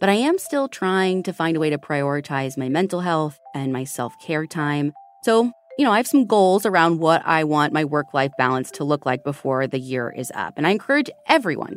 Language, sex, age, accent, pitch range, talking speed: English, female, 30-49, American, 155-235 Hz, 225 wpm